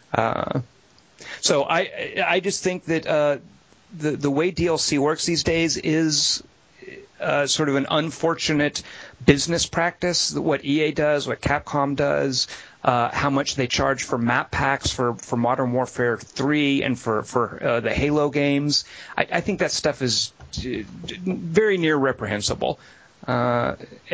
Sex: male